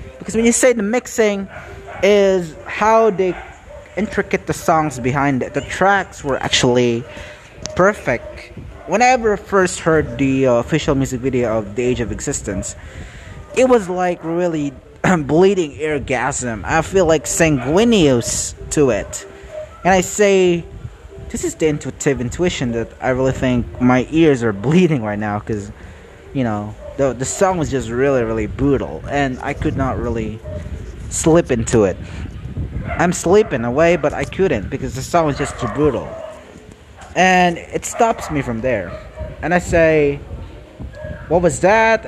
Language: English